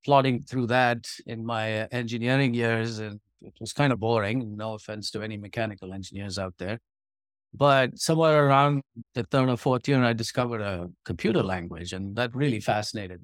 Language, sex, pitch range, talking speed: English, male, 110-140 Hz, 170 wpm